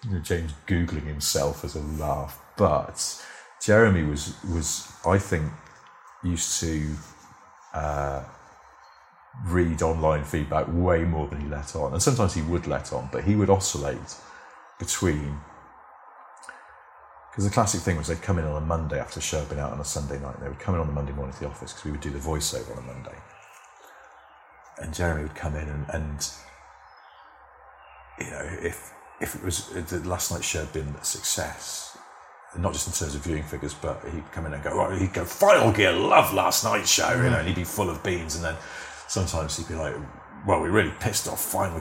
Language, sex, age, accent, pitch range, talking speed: English, male, 40-59, British, 75-90 Hz, 200 wpm